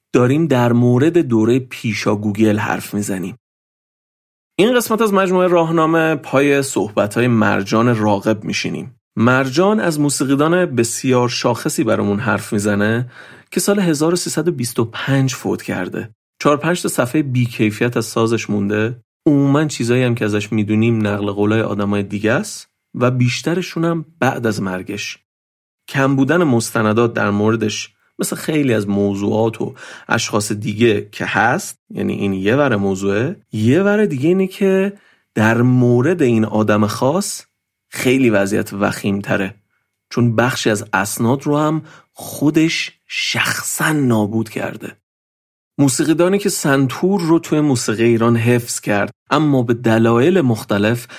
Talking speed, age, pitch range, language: 130 wpm, 40-59, 110-145 Hz, Persian